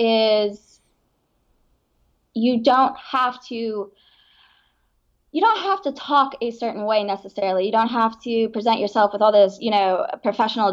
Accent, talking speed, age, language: American, 145 wpm, 20-39, English